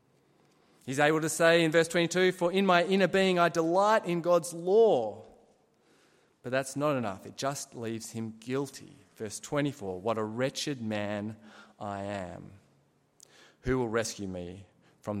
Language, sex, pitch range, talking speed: English, male, 110-180 Hz, 155 wpm